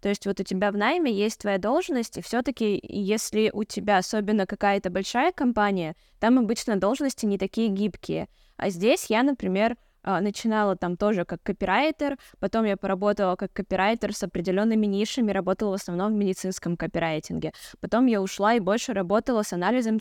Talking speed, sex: 170 wpm, female